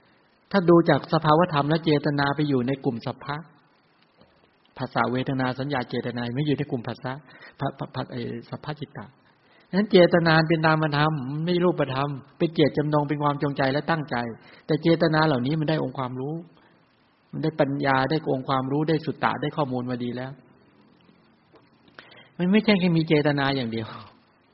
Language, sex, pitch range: English, male, 130-155 Hz